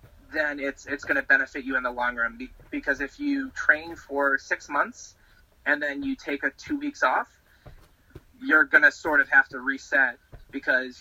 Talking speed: 190 wpm